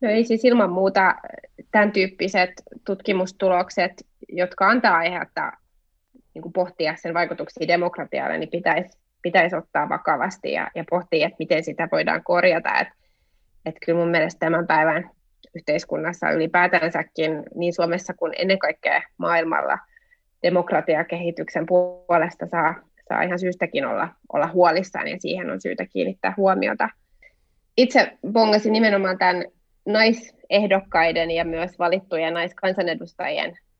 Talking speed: 120 wpm